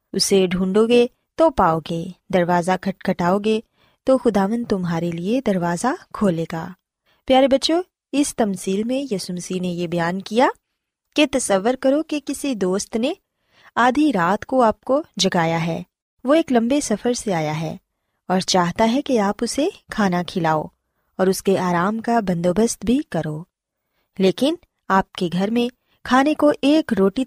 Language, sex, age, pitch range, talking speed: Urdu, female, 20-39, 185-265 Hz, 160 wpm